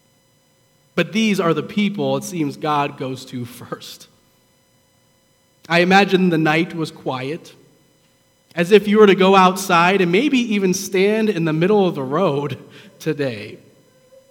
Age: 30-49